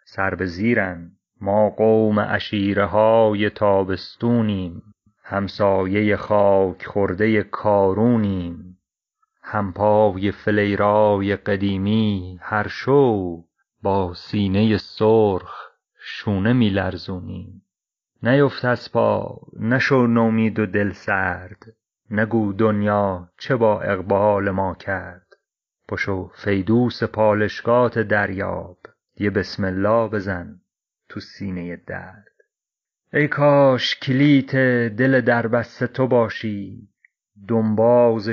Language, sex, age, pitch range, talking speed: Persian, male, 40-59, 100-115 Hz, 85 wpm